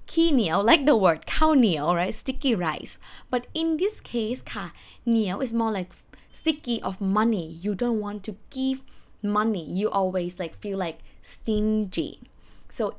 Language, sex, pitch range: Thai, female, 200-290 Hz